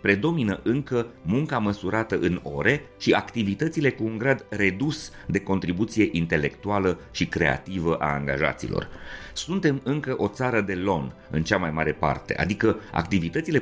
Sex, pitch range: male, 90-135 Hz